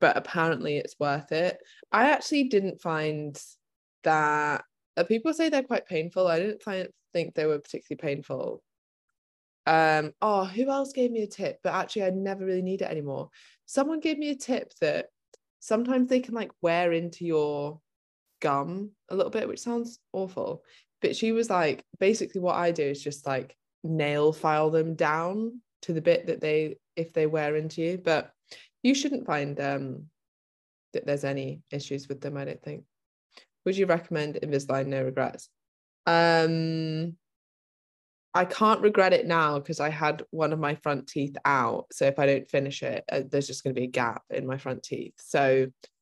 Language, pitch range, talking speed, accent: English, 140-190 Hz, 180 wpm, British